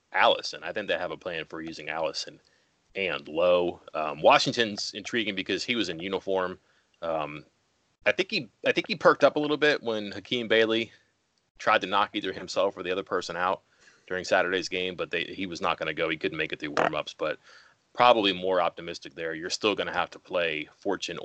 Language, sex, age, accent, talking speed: English, male, 30-49, American, 205 wpm